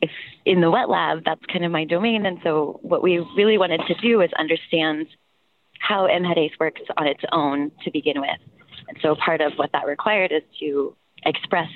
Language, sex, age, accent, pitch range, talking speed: English, female, 20-39, American, 155-195 Hz, 195 wpm